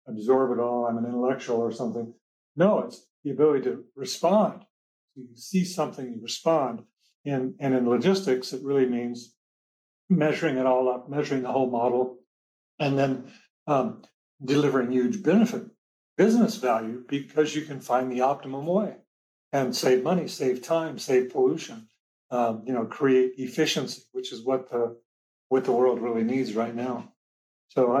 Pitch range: 120-150 Hz